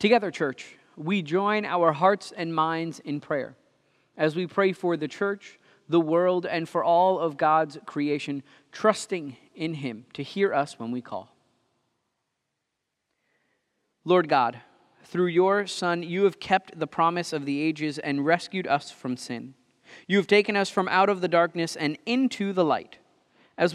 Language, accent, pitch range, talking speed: English, American, 155-190 Hz, 165 wpm